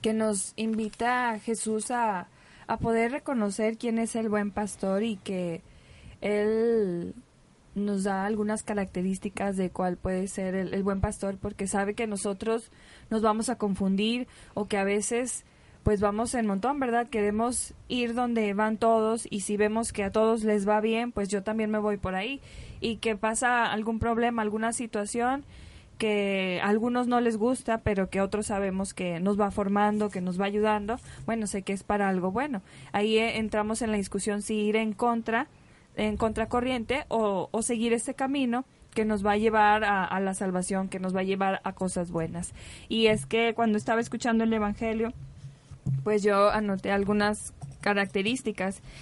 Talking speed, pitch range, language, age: 175 wpm, 200-230 Hz, Spanish, 20-39